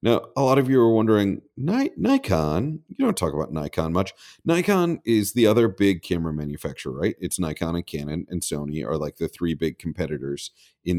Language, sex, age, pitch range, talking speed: English, male, 40-59, 80-100 Hz, 190 wpm